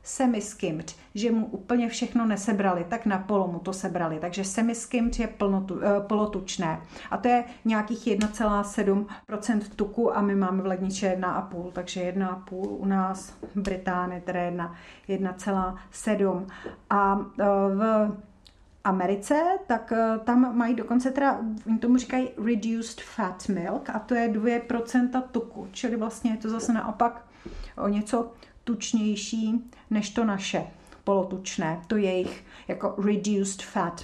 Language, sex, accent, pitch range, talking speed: Czech, female, native, 195-225 Hz, 135 wpm